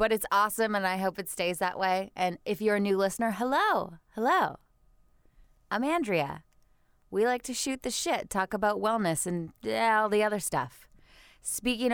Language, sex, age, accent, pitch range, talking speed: English, female, 20-39, American, 160-215 Hz, 175 wpm